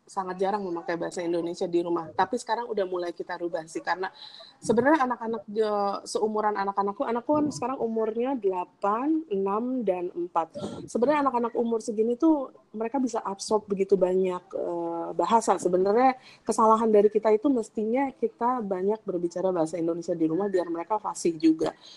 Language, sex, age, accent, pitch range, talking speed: Indonesian, female, 20-39, native, 175-225 Hz, 150 wpm